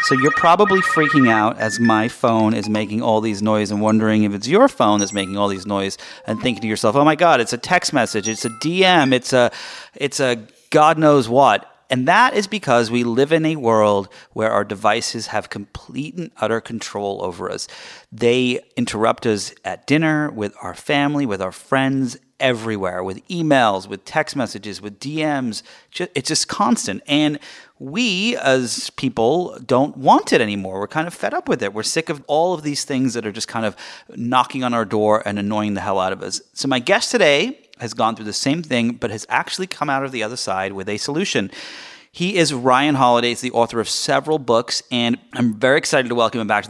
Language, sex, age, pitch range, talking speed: English, male, 30-49, 105-135 Hz, 210 wpm